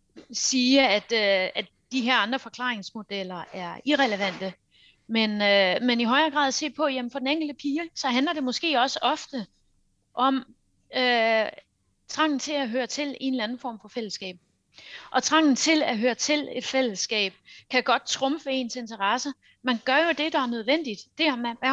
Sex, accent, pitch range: female, native, 230-280 Hz